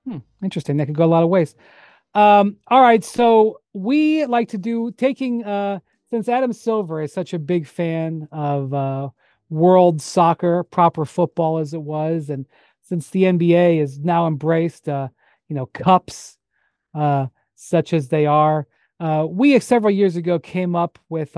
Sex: male